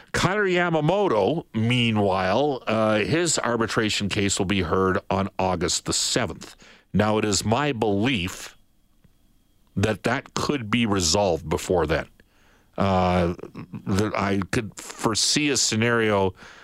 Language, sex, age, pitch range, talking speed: English, male, 50-69, 95-115 Hz, 110 wpm